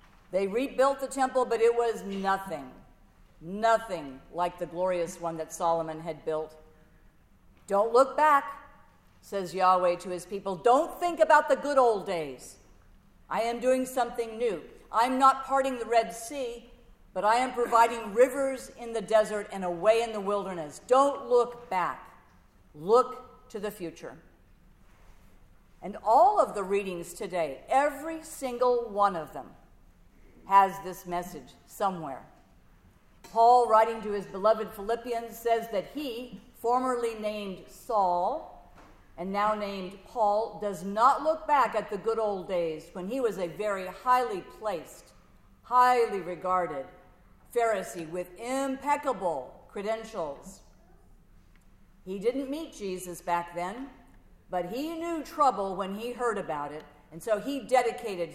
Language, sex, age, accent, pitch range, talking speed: English, female, 50-69, American, 185-250 Hz, 140 wpm